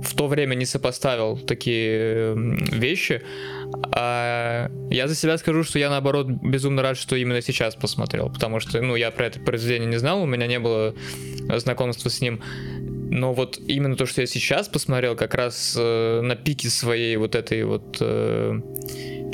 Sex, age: male, 20-39